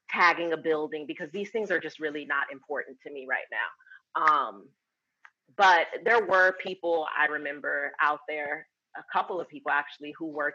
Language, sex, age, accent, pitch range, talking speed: English, female, 30-49, American, 150-185 Hz, 175 wpm